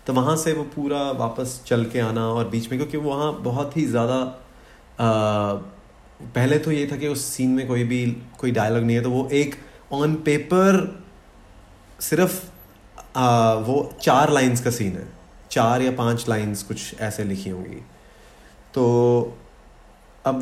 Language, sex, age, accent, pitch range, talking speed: Hindi, male, 30-49, native, 115-140 Hz, 160 wpm